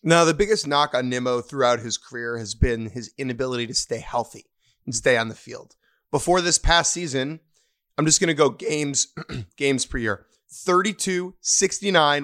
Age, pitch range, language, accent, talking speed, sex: 30-49, 125-160 Hz, English, American, 175 wpm, male